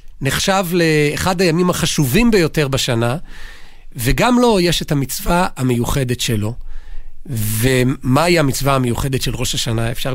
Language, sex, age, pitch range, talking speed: Hebrew, male, 40-59, 125-160 Hz, 125 wpm